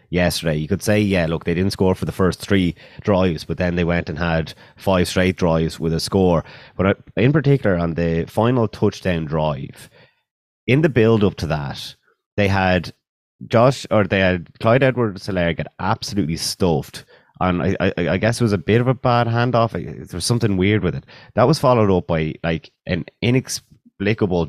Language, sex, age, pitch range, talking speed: English, male, 30-49, 80-105 Hz, 190 wpm